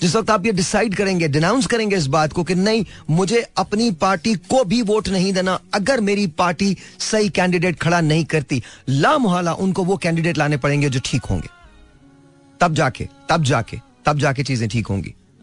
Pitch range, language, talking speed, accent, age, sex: 140-185 Hz, Hindi, 185 wpm, native, 40-59, male